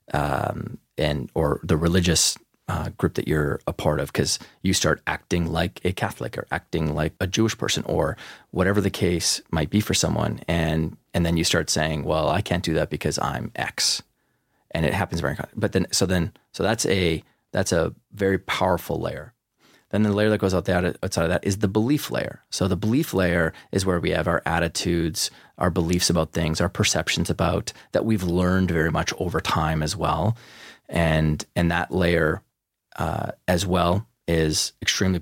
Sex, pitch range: male, 80-100 Hz